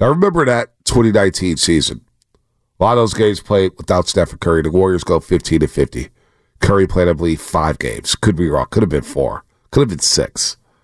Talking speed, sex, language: 200 wpm, male, English